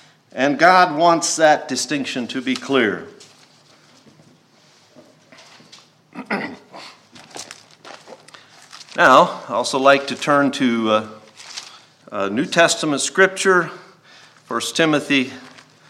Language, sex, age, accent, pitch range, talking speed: English, male, 50-69, American, 145-210 Hz, 85 wpm